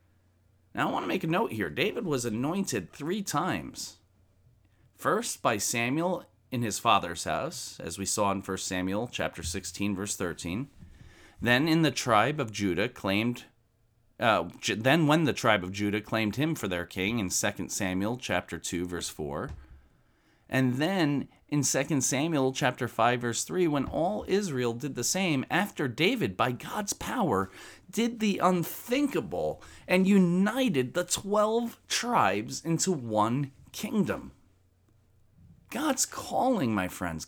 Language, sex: English, male